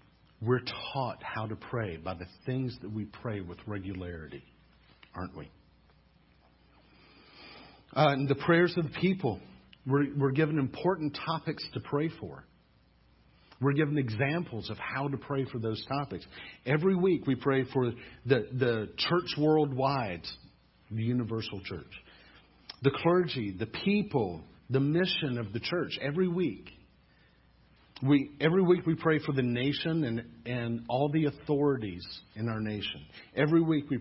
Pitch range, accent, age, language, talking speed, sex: 110-150 Hz, American, 50-69, English, 145 wpm, male